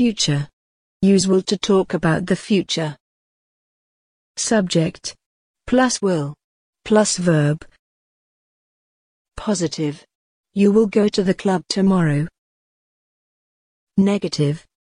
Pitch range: 165-200 Hz